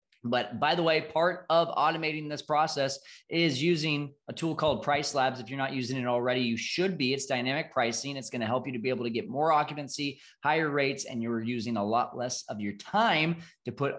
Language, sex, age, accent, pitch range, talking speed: English, male, 20-39, American, 120-155 Hz, 225 wpm